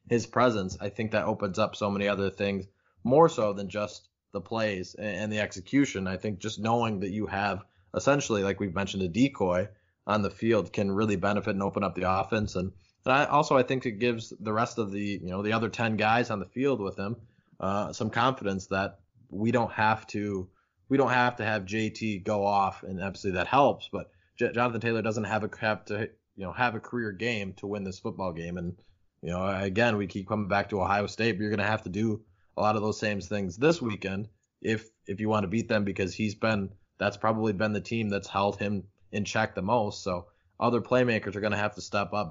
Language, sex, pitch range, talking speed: English, male, 95-110 Hz, 235 wpm